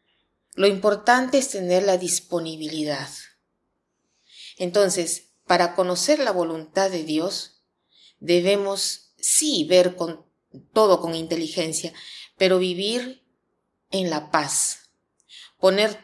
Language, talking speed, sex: Spanish, 95 wpm, female